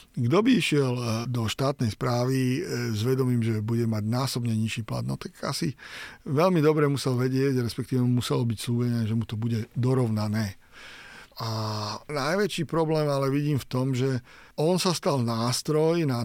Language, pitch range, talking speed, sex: Slovak, 120-150 Hz, 160 wpm, male